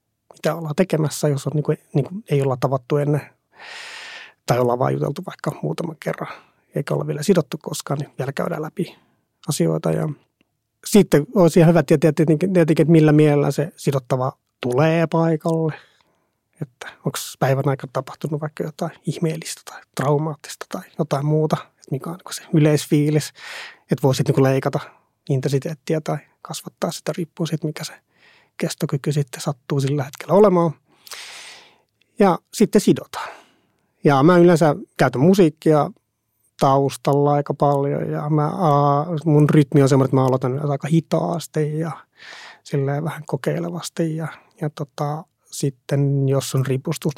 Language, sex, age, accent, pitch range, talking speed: Finnish, male, 30-49, native, 140-165 Hz, 140 wpm